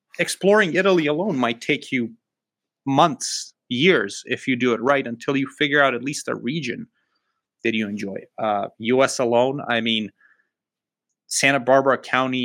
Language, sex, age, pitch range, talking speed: English, male, 30-49, 115-145 Hz, 155 wpm